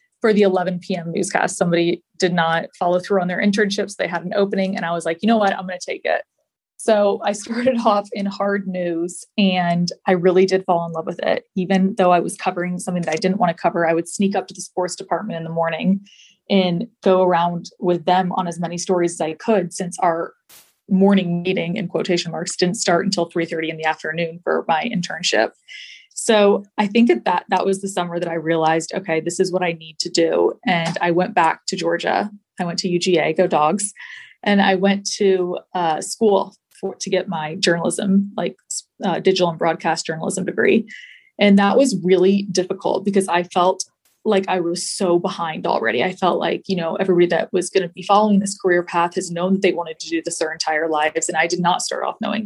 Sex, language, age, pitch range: female, English, 20-39, 170-195 Hz